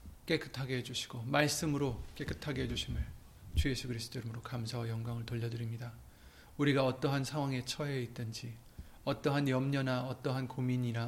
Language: Korean